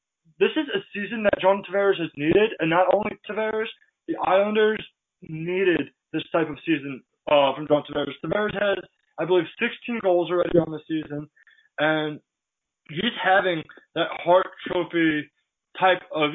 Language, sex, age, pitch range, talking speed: English, male, 20-39, 155-195 Hz, 155 wpm